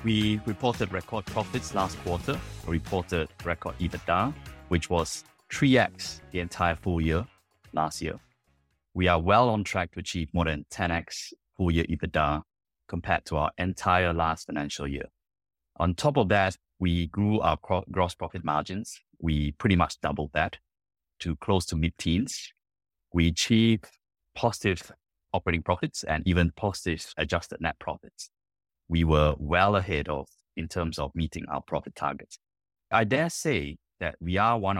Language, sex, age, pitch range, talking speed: English, male, 30-49, 80-105 Hz, 150 wpm